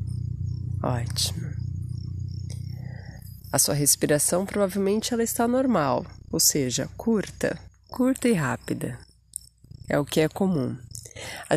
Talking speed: 105 wpm